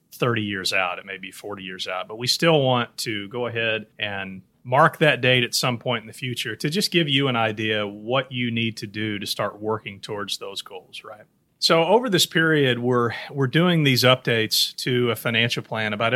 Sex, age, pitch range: male, 30-49, 115-145 Hz